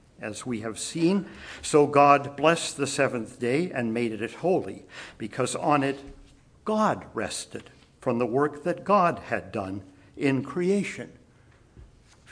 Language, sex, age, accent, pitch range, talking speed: English, male, 60-79, American, 120-155 Hz, 140 wpm